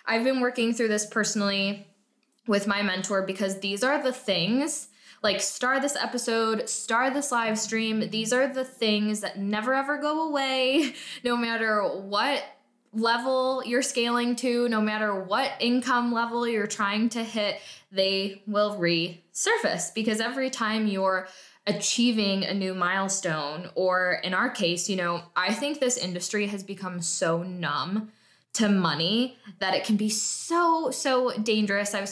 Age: 10-29